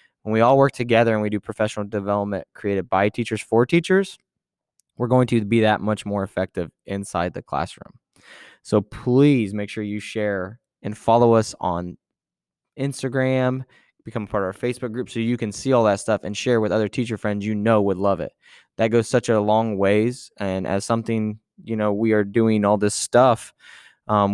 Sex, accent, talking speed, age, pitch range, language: male, American, 195 wpm, 20-39, 100-115 Hz, English